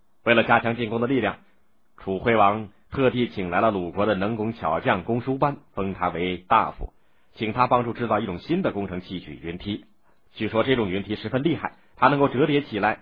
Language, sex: Chinese, male